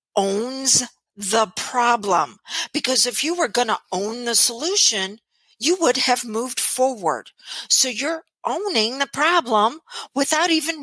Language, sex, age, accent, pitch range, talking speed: English, female, 50-69, American, 185-310 Hz, 135 wpm